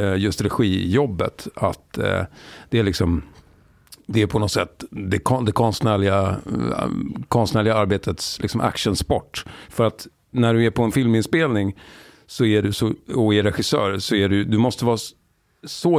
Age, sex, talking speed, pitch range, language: 50-69, male, 160 wpm, 90-115 Hz, Swedish